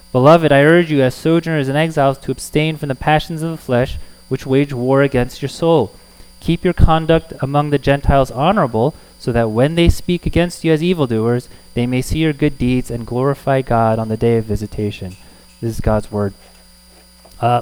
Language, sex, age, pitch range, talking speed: English, male, 20-39, 120-155 Hz, 195 wpm